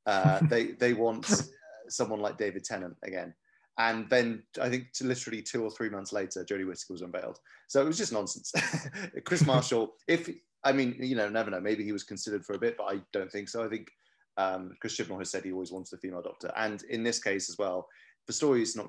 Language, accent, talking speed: English, British, 230 wpm